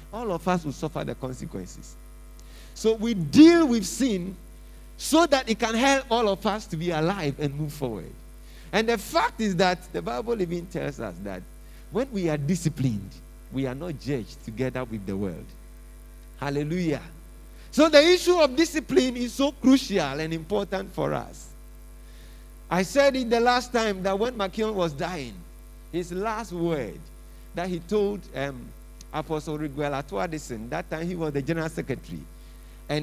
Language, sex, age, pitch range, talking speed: English, male, 50-69, 145-230 Hz, 165 wpm